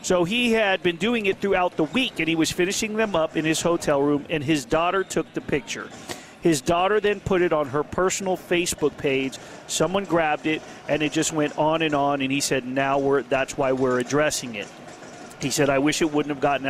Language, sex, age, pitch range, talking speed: English, male, 40-59, 150-195 Hz, 225 wpm